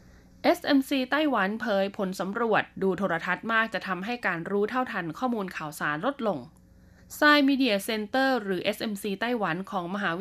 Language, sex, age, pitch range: Thai, female, 20-39, 185-245 Hz